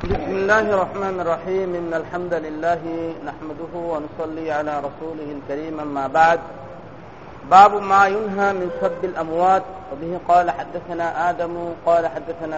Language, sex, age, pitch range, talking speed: Bengali, male, 40-59, 165-185 Hz, 120 wpm